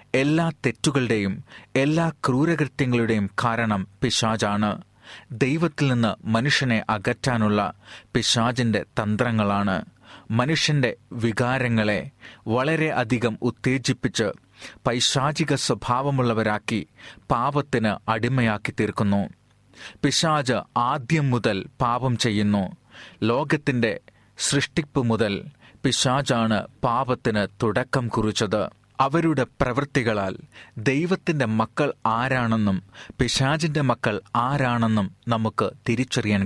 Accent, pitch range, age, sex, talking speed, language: native, 110-140 Hz, 30-49, male, 70 wpm, Malayalam